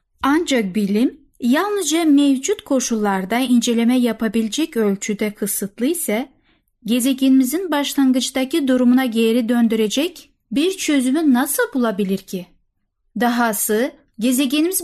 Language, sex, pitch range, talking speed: Turkish, female, 220-280 Hz, 90 wpm